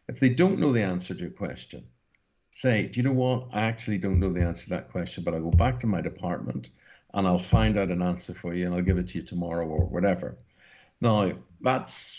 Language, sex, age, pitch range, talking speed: English, male, 60-79, 90-120 Hz, 240 wpm